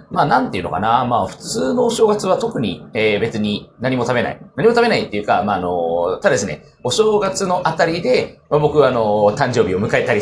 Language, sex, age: Japanese, male, 30-49